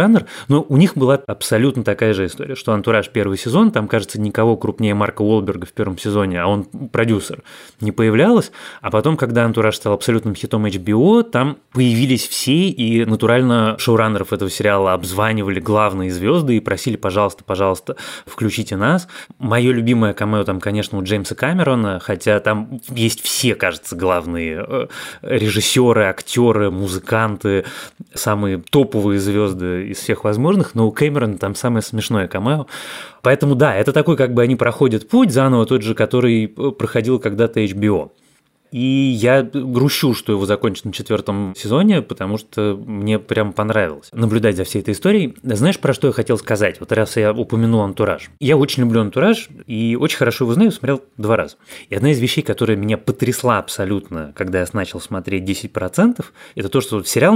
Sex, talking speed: male, 165 wpm